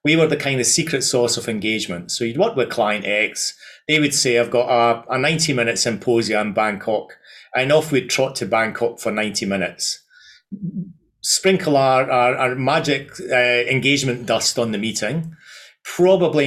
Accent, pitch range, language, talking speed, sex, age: British, 115-145 Hz, English, 175 wpm, male, 40-59